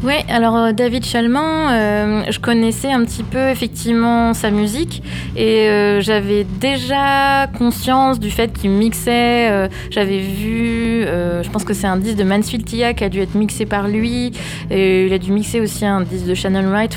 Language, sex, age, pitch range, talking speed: French, female, 20-39, 185-230 Hz, 185 wpm